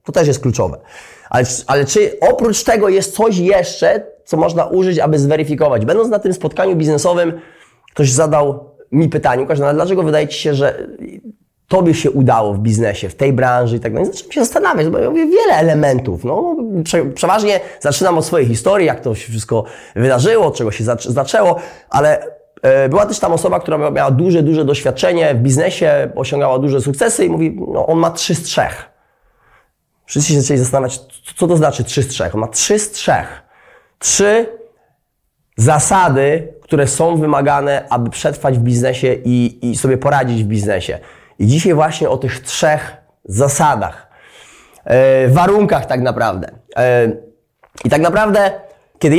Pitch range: 130-195 Hz